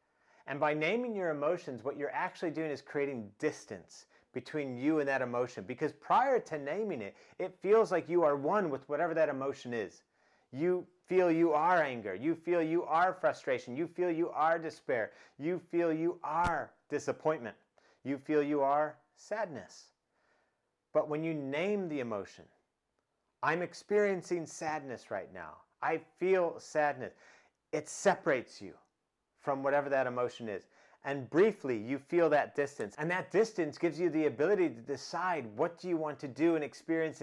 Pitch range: 140-180 Hz